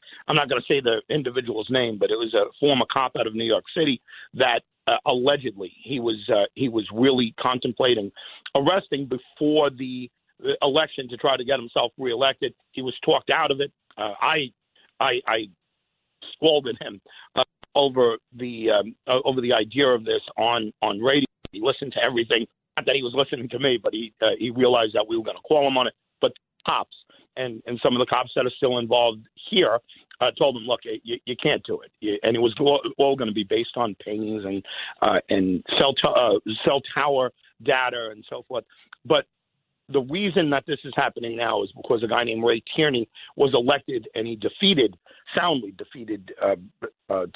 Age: 50-69